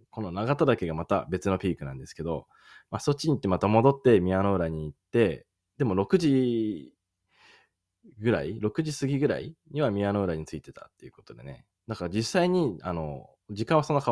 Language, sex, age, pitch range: Japanese, male, 20-39, 85-130 Hz